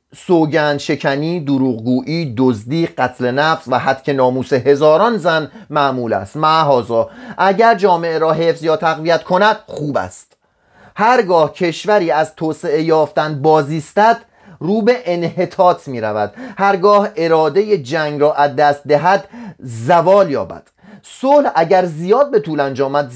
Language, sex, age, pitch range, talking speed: Persian, male, 30-49, 145-210 Hz, 125 wpm